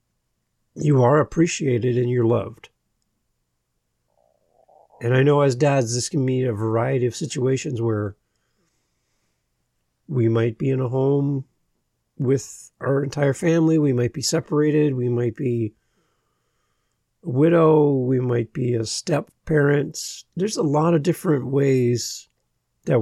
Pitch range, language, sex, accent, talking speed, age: 115-150 Hz, English, male, American, 130 wpm, 50-69